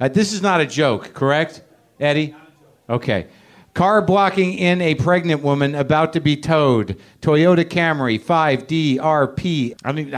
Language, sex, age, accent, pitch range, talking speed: English, male, 50-69, American, 130-185 Hz, 145 wpm